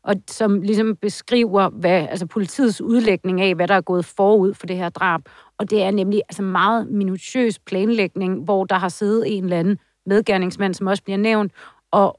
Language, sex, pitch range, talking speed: Danish, female, 180-205 Hz, 190 wpm